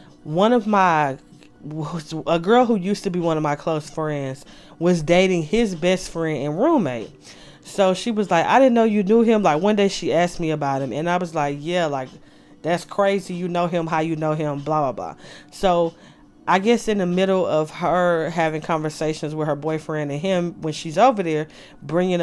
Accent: American